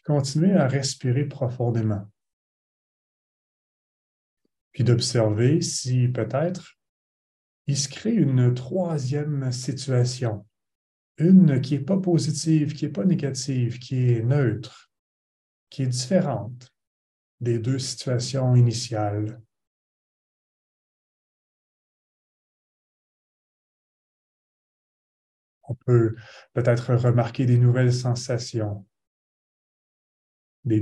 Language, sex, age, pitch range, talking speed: French, male, 30-49, 110-135 Hz, 80 wpm